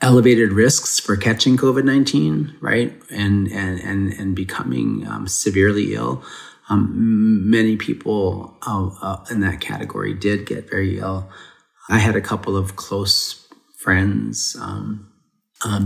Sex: male